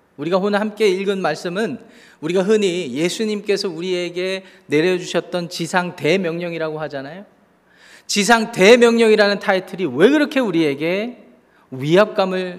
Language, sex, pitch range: Korean, male, 150-200 Hz